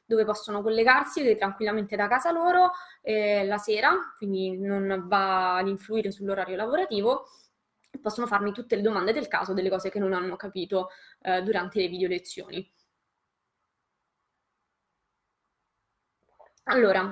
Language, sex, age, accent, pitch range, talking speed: Italian, female, 20-39, native, 205-285 Hz, 125 wpm